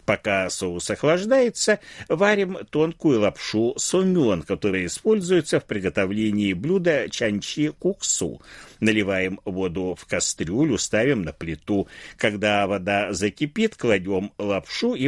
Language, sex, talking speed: Russian, male, 105 wpm